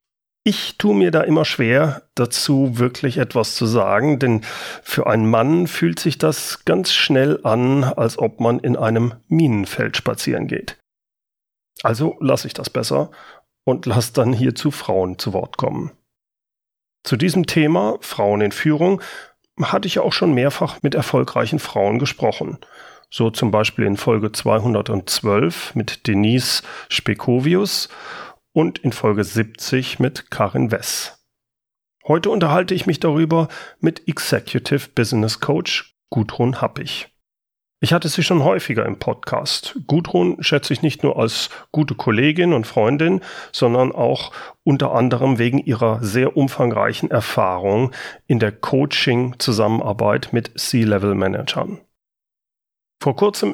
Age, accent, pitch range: 40-59, German, 115-155 Hz